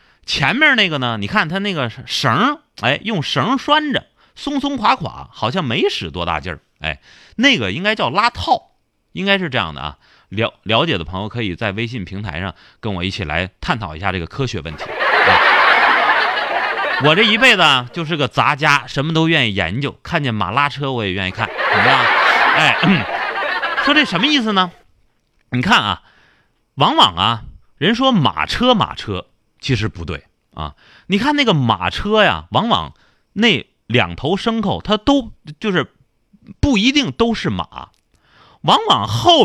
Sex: male